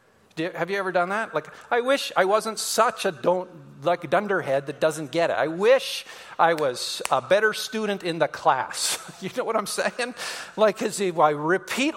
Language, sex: English, male